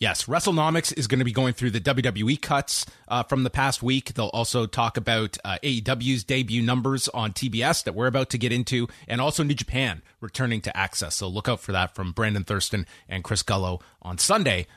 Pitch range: 110-145 Hz